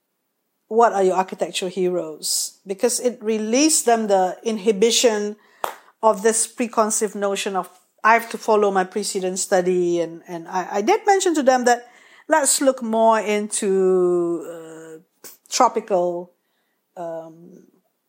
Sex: female